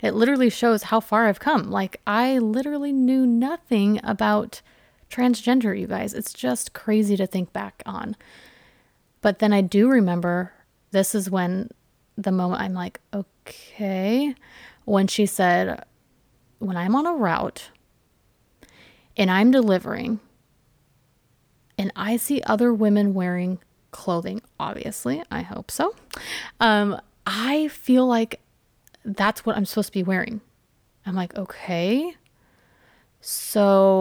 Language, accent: English, American